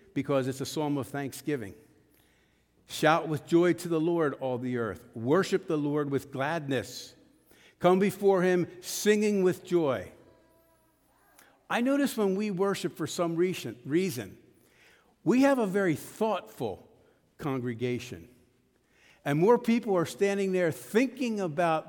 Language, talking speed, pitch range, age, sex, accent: English, 130 wpm, 125-190 Hz, 60-79, male, American